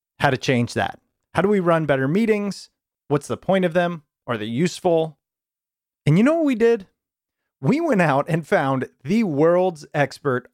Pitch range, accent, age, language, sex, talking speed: 130-195 Hz, American, 30-49, English, male, 180 wpm